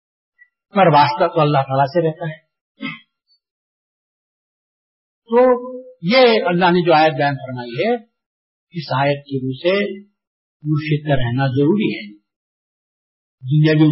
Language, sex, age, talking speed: Urdu, male, 50-69, 115 wpm